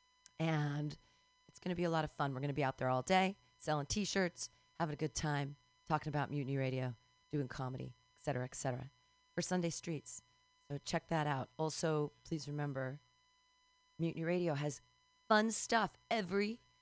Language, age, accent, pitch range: English, 40-59, American, 130-185 Hz